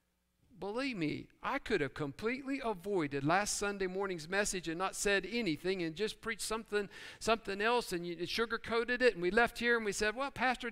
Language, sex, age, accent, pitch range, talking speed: English, male, 50-69, American, 175-240 Hz, 195 wpm